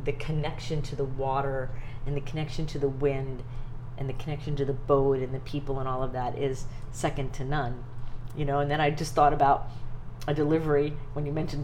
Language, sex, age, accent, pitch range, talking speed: English, female, 40-59, American, 135-155 Hz, 210 wpm